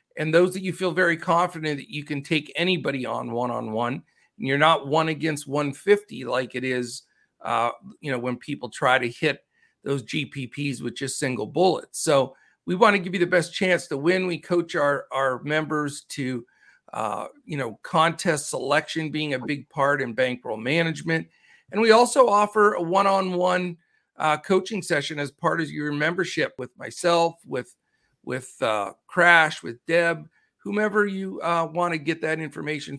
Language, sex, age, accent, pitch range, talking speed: English, male, 50-69, American, 140-185 Hz, 175 wpm